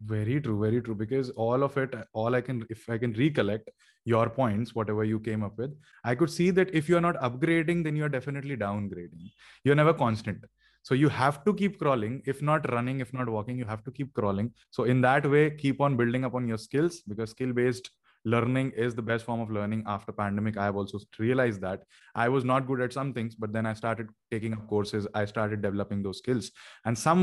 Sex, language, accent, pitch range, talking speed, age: male, Hindi, native, 110-135 Hz, 235 wpm, 20-39